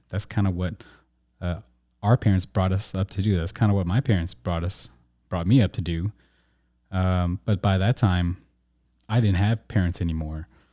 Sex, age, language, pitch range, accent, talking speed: male, 30-49, English, 85-110 Hz, American, 195 wpm